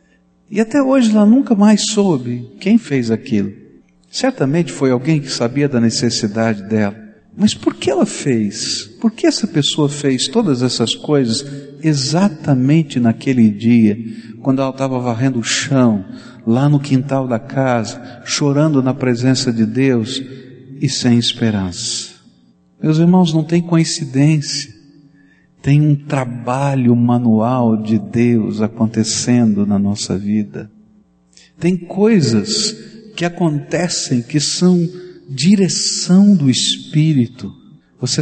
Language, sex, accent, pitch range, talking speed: Portuguese, male, Brazilian, 120-170 Hz, 120 wpm